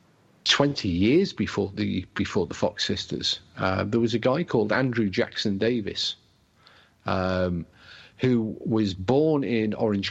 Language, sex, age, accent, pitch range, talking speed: English, male, 50-69, British, 95-120 Hz, 135 wpm